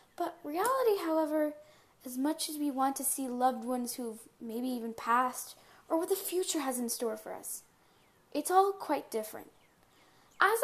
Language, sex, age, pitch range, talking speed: English, female, 10-29, 235-315 Hz, 170 wpm